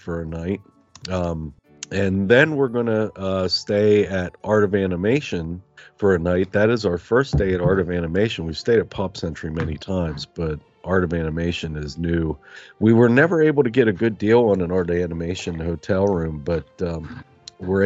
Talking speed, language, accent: 195 wpm, English, American